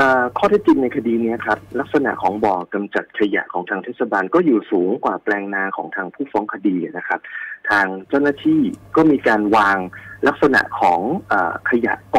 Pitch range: 100-140 Hz